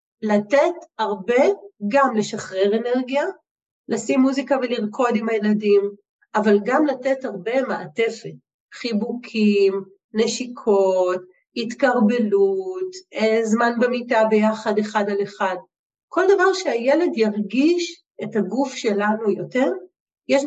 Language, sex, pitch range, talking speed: Hebrew, female, 205-270 Hz, 95 wpm